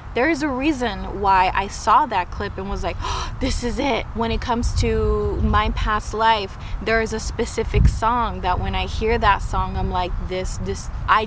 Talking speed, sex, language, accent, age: 200 wpm, female, English, American, 20-39